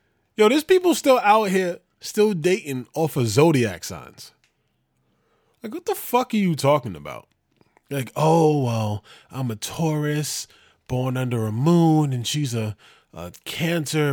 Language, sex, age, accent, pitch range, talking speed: English, male, 20-39, American, 135-185 Hz, 150 wpm